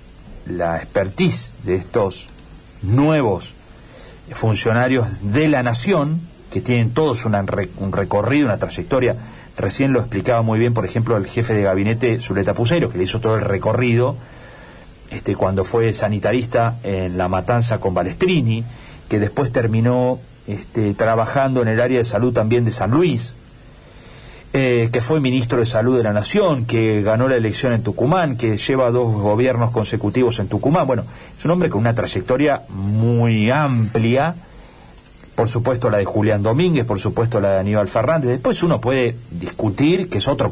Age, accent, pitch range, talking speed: 40-59, Argentinian, 105-130 Hz, 160 wpm